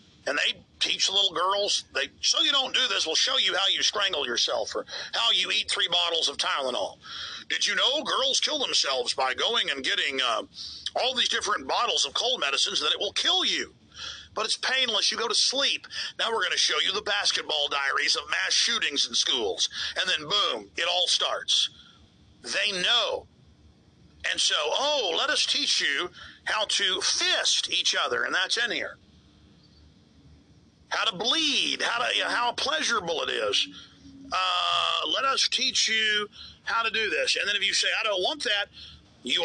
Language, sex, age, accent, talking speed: English, male, 50-69, American, 190 wpm